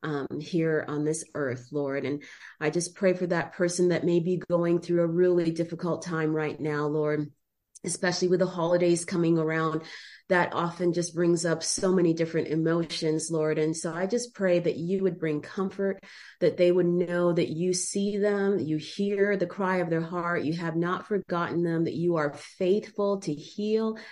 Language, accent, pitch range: English, American, 155-180 Hz